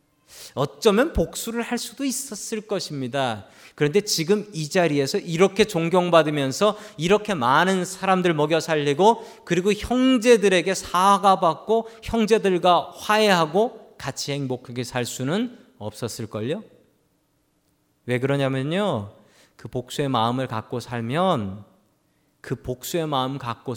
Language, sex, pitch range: Korean, male, 130-205 Hz